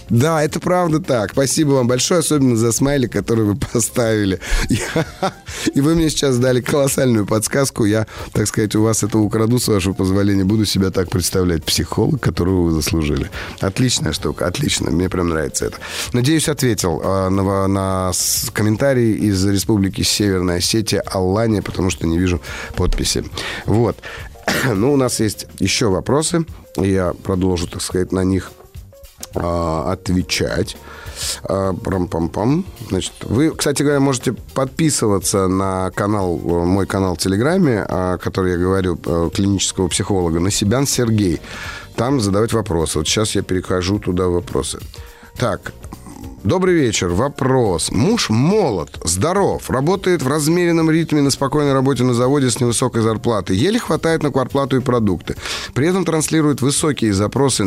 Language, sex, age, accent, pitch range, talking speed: Russian, male, 30-49, native, 95-135 Hz, 145 wpm